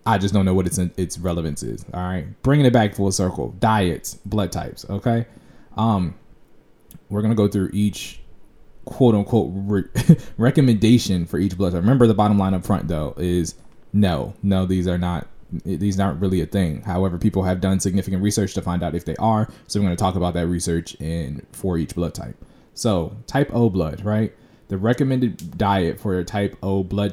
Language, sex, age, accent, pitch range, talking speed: English, male, 20-39, American, 90-110 Hz, 200 wpm